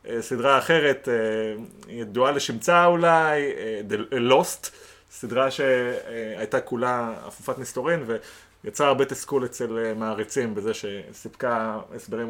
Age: 30-49